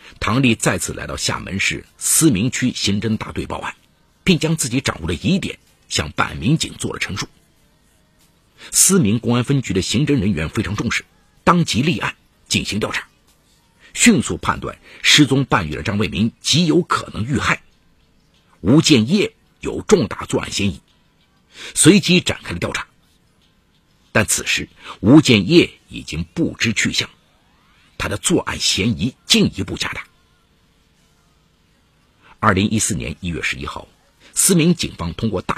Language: Chinese